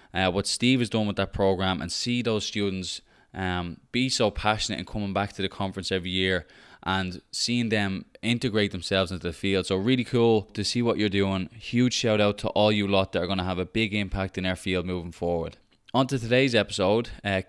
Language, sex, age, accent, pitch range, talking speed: English, male, 20-39, Irish, 95-110 Hz, 225 wpm